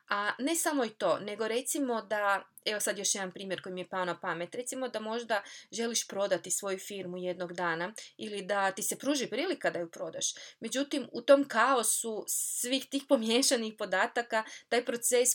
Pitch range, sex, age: 185-235 Hz, female, 20-39